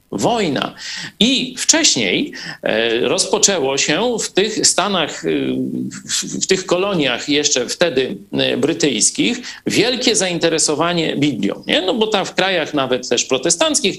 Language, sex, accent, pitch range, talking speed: Polish, male, native, 130-190 Hz, 110 wpm